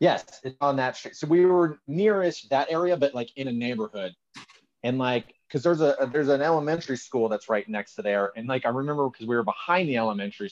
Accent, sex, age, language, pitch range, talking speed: American, male, 30-49, English, 110-135 Hz, 230 wpm